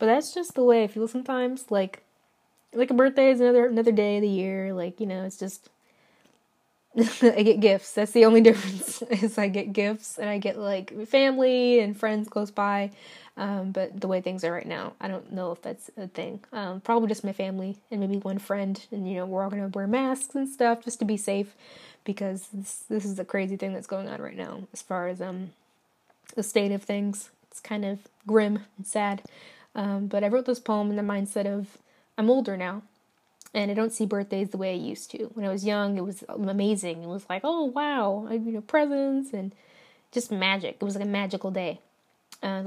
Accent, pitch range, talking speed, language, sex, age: American, 195-235 Hz, 220 wpm, English, female, 20-39